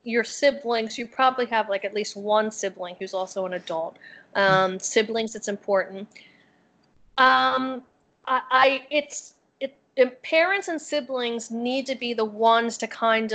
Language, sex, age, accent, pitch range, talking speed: English, female, 30-49, American, 205-235 Hz, 150 wpm